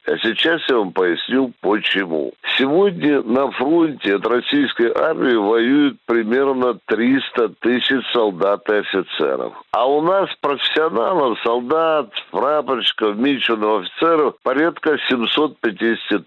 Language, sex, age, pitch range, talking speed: Russian, male, 60-79, 120-160 Hz, 105 wpm